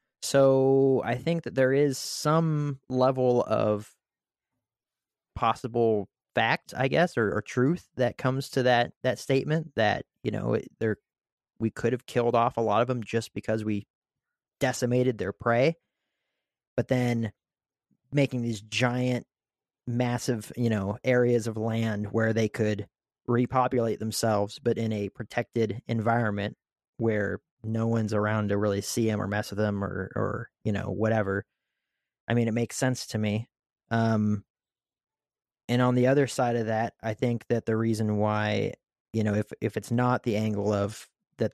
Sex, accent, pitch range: male, American, 105-125 Hz